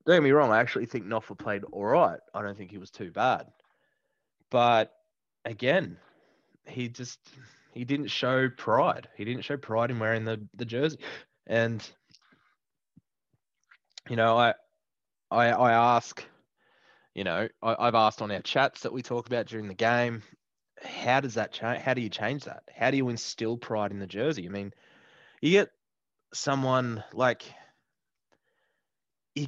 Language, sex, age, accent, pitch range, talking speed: English, male, 20-39, Australian, 105-125 Hz, 165 wpm